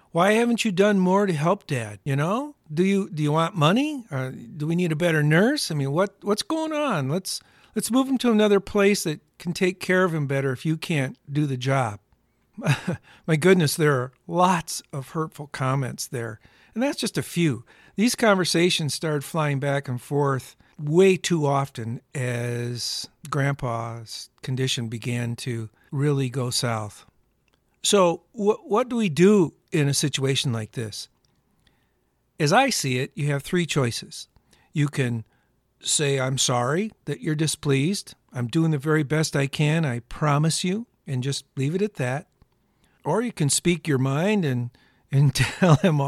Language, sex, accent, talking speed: English, male, American, 175 wpm